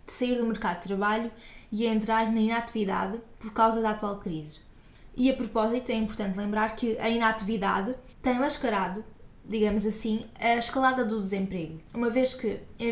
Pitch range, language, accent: 205-235 Hz, Portuguese, Brazilian